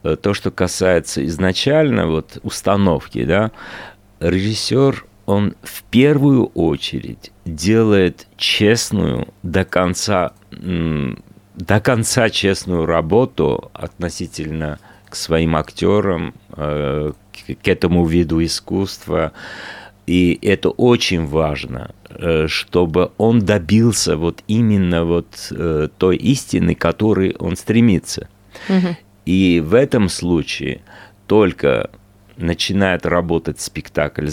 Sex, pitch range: male, 80-105 Hz